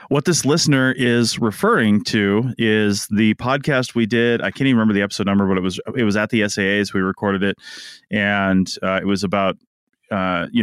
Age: 20-39